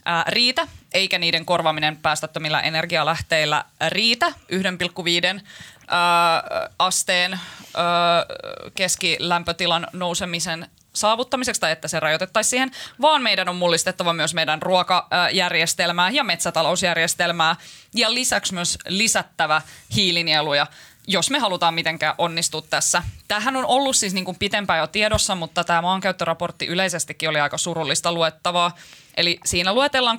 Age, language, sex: 20-39, Finnish, female